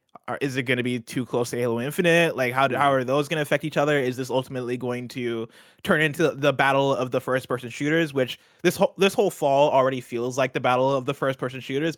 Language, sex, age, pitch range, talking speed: English, male, 20-39, 130-155 Hz, 255 wpm